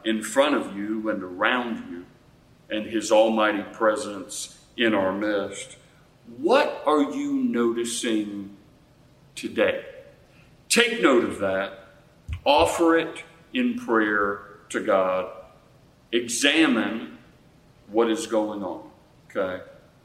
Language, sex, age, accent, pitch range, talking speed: English, male, 40-59, American, 100-150 Hz, 105 wpm